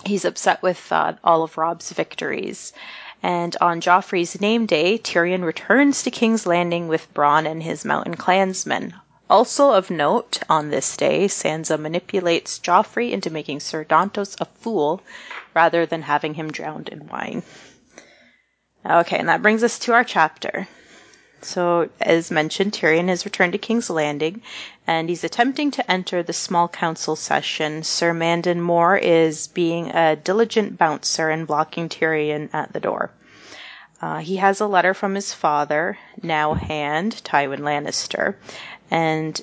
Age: 30-49